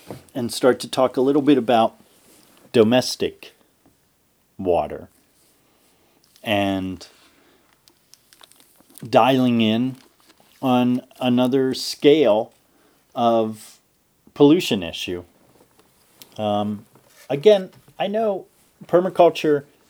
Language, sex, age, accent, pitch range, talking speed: English, male, 40-59, American, 105-135 Hz, 70 wpm